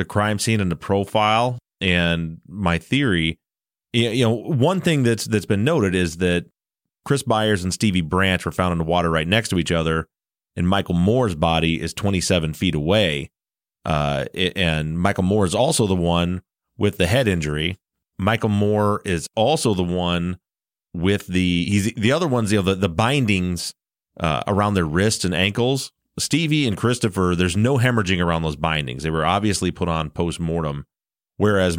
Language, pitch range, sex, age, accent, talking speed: English, 85-110 Hz, male, 30-49, American, 175 wpm